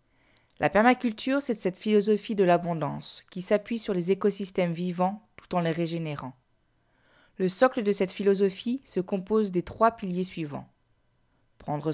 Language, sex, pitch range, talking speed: French, female, 170-215 Hz, 145 wpm